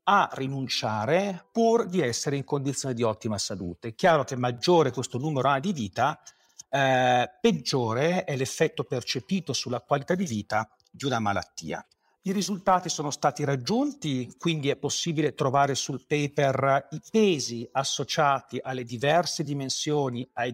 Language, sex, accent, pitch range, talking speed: Italian, male, native, 125-155 Hz, 140 wpm